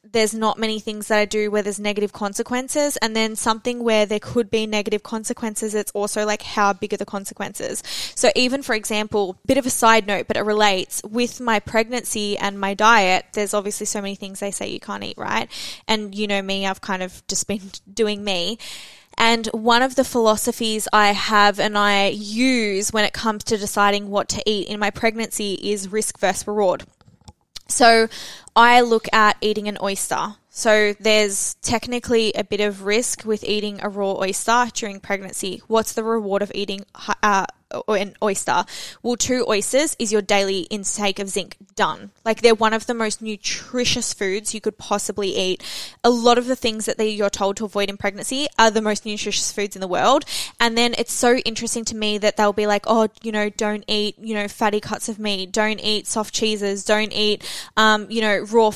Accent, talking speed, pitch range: Australian, 200 wpm, 205-225 Hz